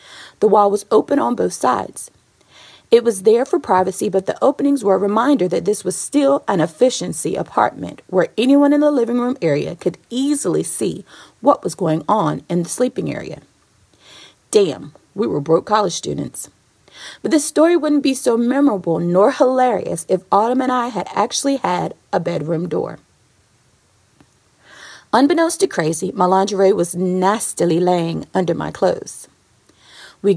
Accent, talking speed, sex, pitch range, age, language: American, 160 wpm, female, 170-255 Hz, 30-49, English